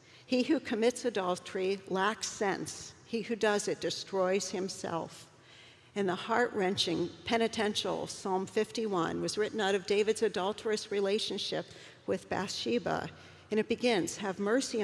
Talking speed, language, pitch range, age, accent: 130 wpm, English, 175-215 Hz, 60-79, American